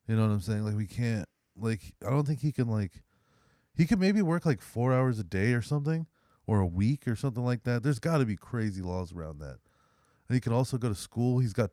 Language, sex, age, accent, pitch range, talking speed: English, male, 20-39, American, 95-125 Hz, 255 wpm